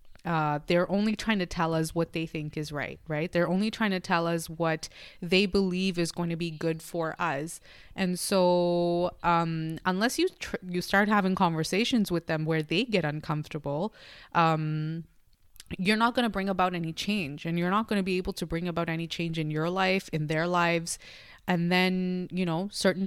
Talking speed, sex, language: 200 wpm, female, English